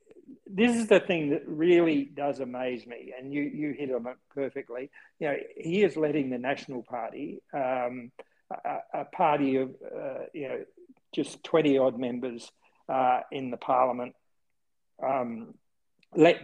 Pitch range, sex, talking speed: 125-155 Hz, male, 150 wpm